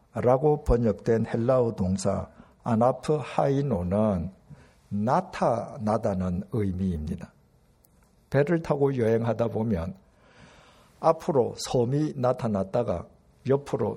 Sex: male